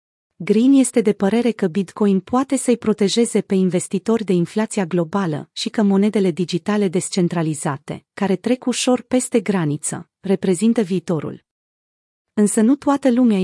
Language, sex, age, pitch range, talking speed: Romanian, female, 30-49, 180-220 Hz, 135 wpm